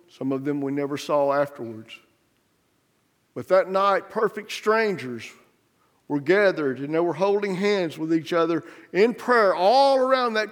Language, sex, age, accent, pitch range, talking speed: English, male, 50-69, American, 135-165 Hz, 155 wpm